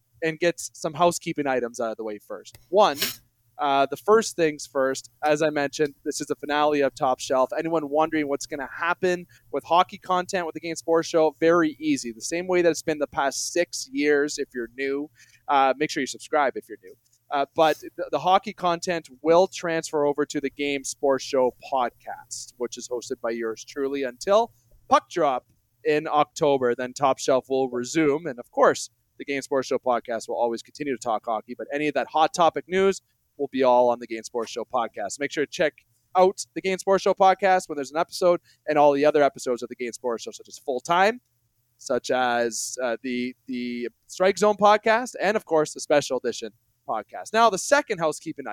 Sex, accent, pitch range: male, American, 125-170 Hz